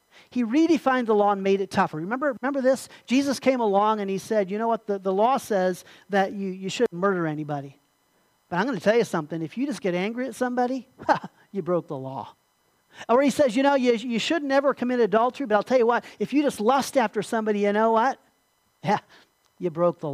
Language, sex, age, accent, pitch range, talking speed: English, male, 40-59, American, 185-240 Hz, 230 wpm